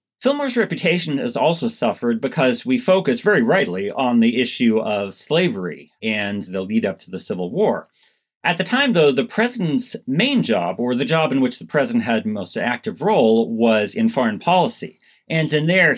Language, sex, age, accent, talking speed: English, male, 30-49, American, 190 wpm